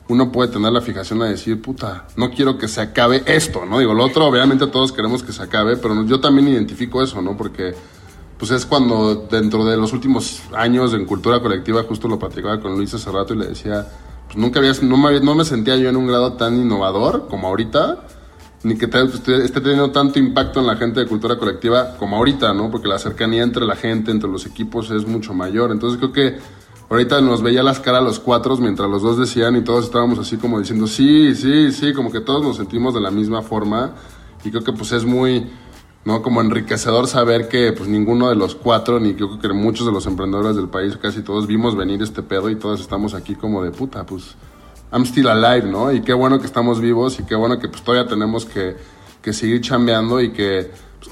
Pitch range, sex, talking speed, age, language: 105-125 Hz, male, 225 wpm, 20-39, Spanish